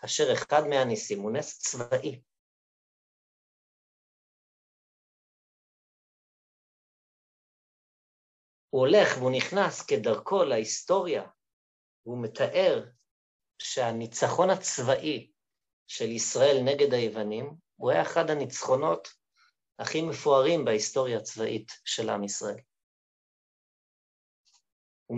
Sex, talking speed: male, 75 wpm